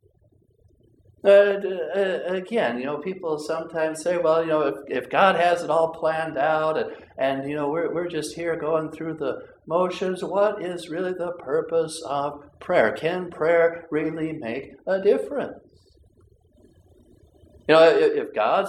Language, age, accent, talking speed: English, 60-79, American, 155 wpm